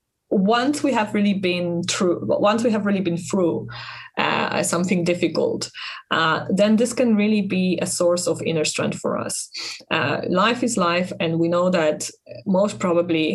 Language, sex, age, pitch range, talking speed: English, female, 20-39, 160-200 Hz, 170 wpm